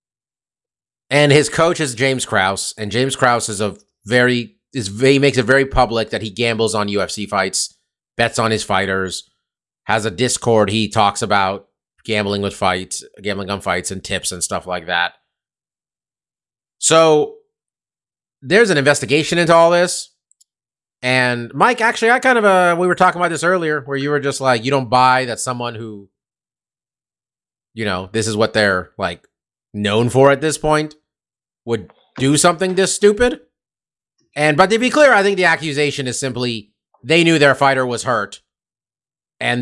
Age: 30-49